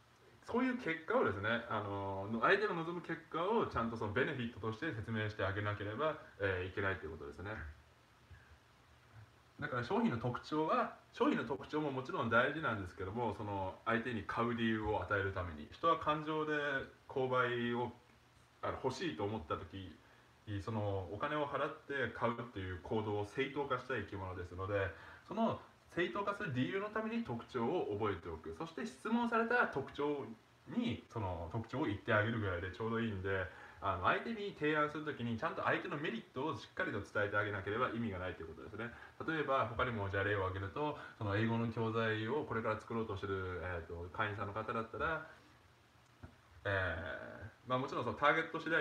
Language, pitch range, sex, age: Japanese, 100-145 Hz, male, 20-39